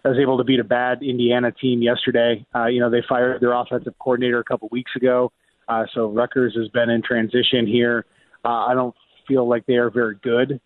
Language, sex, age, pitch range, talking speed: English, male, 30-49, 120-130 Hz, 220 wpm